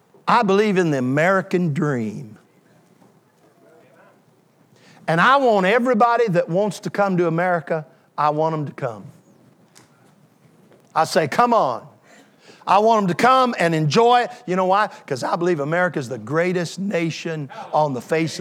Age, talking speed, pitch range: 50-69, 155 wpm, 150-205 Hz